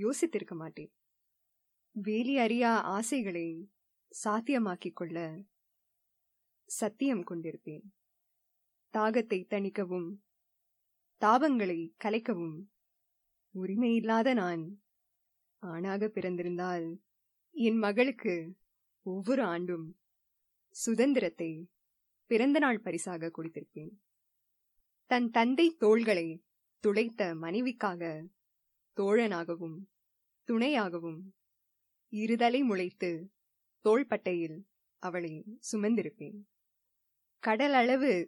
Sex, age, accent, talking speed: female, 20-39, native, 60 wpm